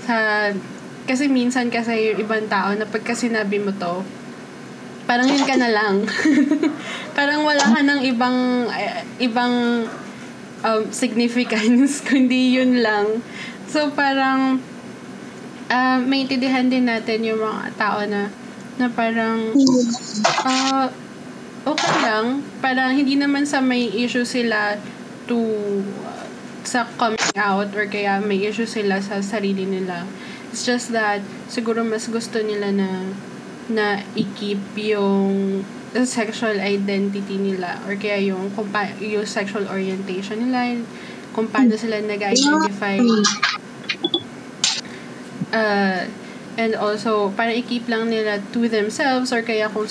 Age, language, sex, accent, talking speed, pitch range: 20-39, Filipino, female, native, 120 wpm, 210-250 Hz